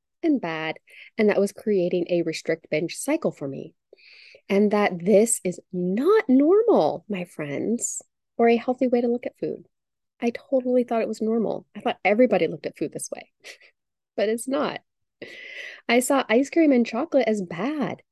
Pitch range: 170-240 Hz